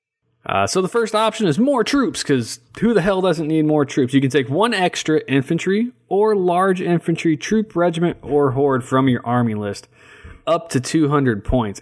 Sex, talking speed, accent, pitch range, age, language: male, 190 wpm, American, 115-150 Hz, 20-39, English